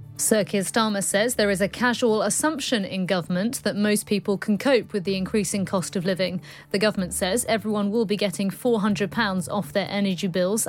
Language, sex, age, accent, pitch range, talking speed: English, female, 30-49, British, 185-220 Hz, 190 wpm